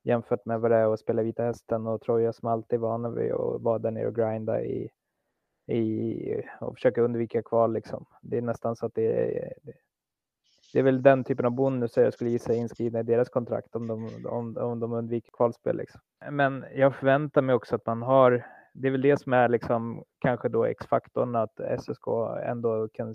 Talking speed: 205 wpm